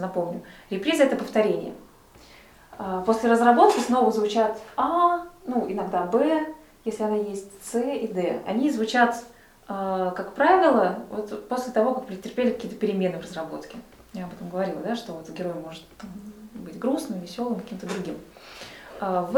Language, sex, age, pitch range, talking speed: Russian, female, 20-39, 195-250 Hz, 145 wpm